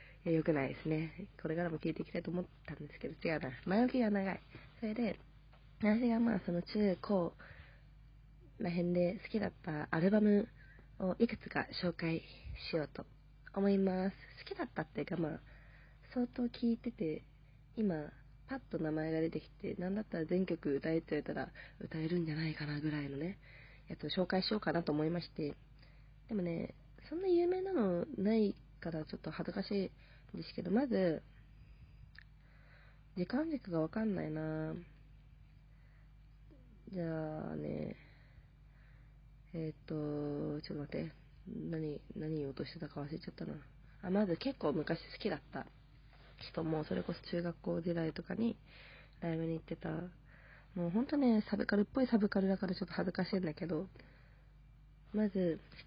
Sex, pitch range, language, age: female, 145-195 Hz, Japanese, 20-39